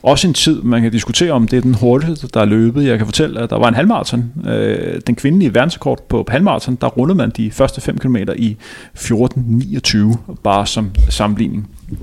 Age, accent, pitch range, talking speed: 30-49, native, 115-145 Hz, 195 wpm